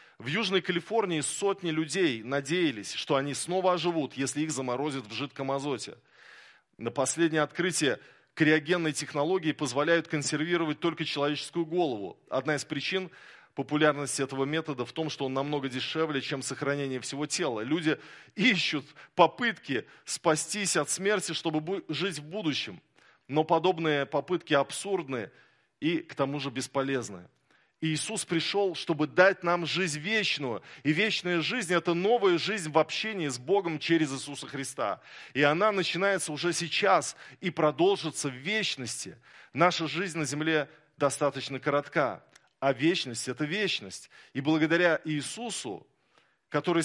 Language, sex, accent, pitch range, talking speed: Russian, male, native, 140-175 Hz, 135 wpm